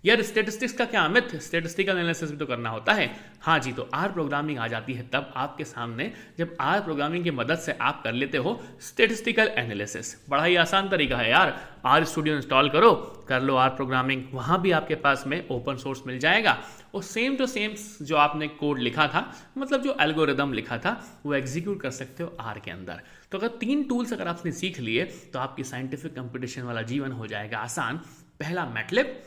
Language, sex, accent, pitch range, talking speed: Hindi, male, native, 130-185 Hz, 200 wpm